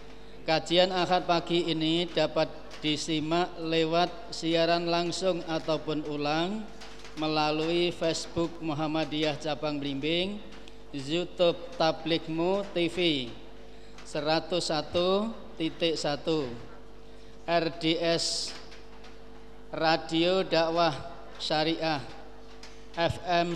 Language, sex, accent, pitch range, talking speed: Indonesian, male, native, 150-170 Hz, 65 wpm